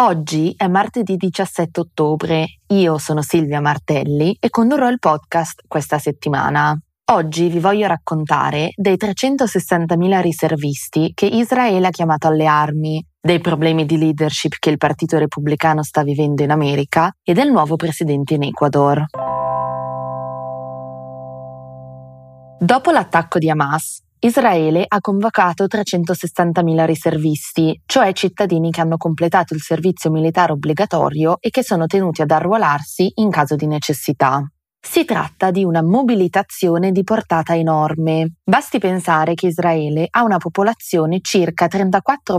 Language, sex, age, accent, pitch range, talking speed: Italian, female, 20-39, native, 150-190 Hz, 130 wpm